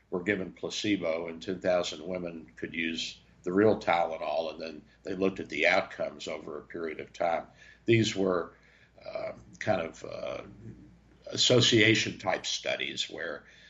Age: 60-79